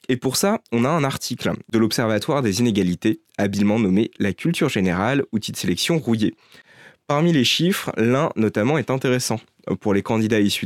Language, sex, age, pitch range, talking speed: French, male, 20-39, 105-145 Hz, 175 wpm